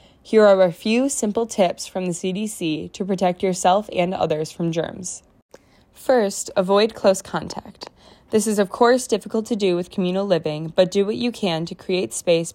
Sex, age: female, 20-39